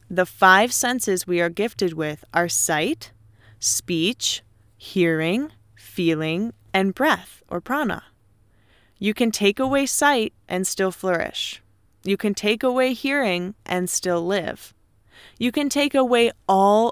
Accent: American